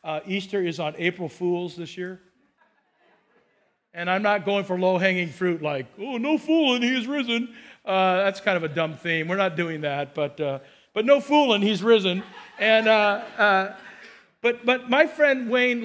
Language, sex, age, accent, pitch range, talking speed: English, male, 50-69, American, 175-220 Hz, 180 wpm